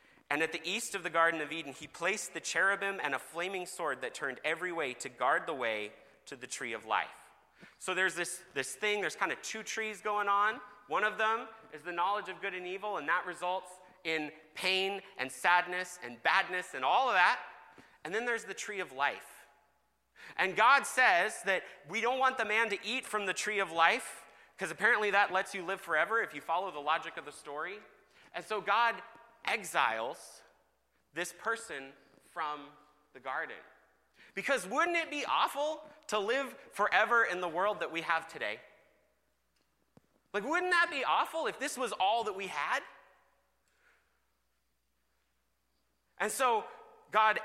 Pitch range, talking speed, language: 165-225 Hz, 180 wpm, English